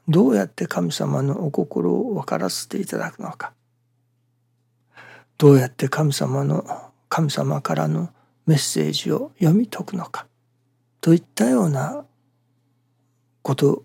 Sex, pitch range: male, 120-145 Hz